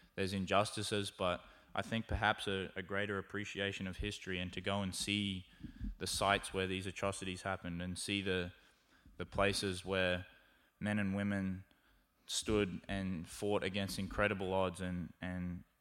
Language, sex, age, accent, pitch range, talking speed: English, male, 20-39, Australian, 95-105 Hz, 150 wpm